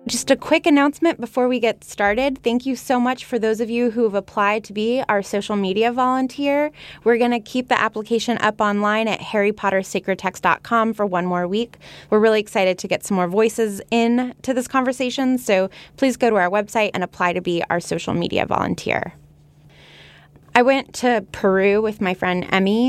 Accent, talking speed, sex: American, 190 wpm, female